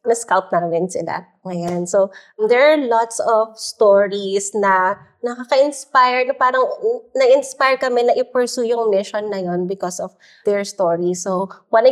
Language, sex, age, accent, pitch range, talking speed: English, female, 20-39, Filipino, 200-260 Hz, 135 wpm